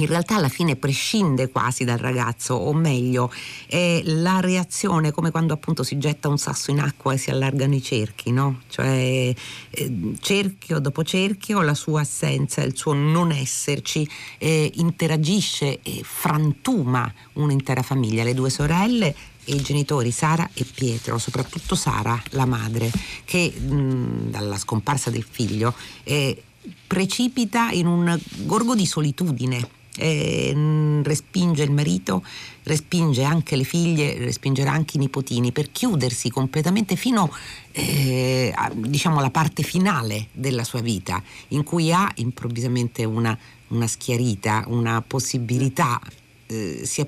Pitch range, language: 120-155 Hz, Italian